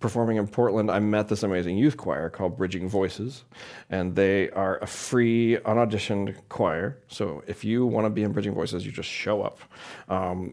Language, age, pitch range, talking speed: English, 40-59, 90-110 Hz, 190 wpm